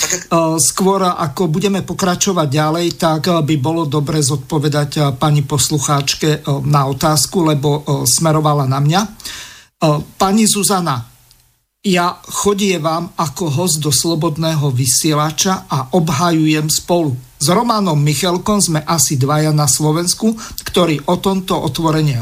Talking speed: 115 wpm